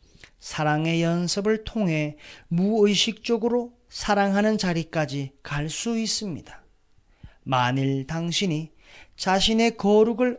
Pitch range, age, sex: 145-215 Hz, 40-59, male